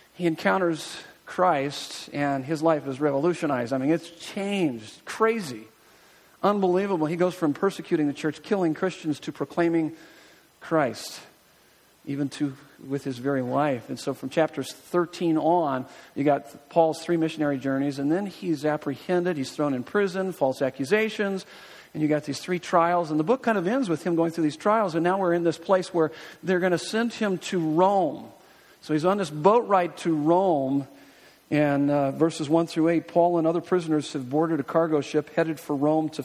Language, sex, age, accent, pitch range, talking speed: English, male, 50-69, American, 150-185 Hz, 185 wpm